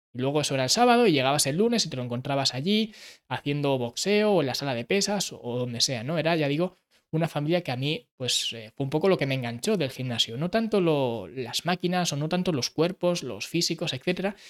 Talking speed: 235 wpm